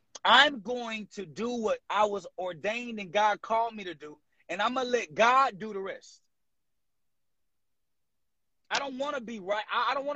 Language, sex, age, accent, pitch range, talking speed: English, male, 30-49, American, 215-265 Hz, 190 wpm